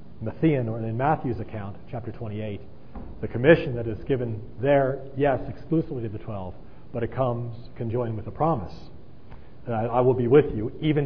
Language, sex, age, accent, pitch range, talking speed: English, male, 40-59, American, 105-130 Hz, 175 wpm